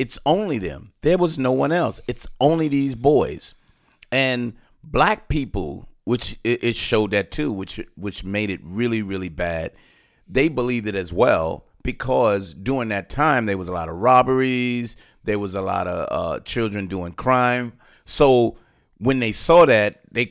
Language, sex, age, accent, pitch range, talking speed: English, male, 40-59, American, 95-125 Hz, 170 wpm